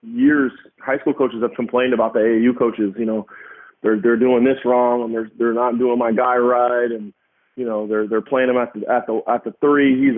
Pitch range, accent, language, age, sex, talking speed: 115-125 Hz, American, English, 20-39, male, 235 wpm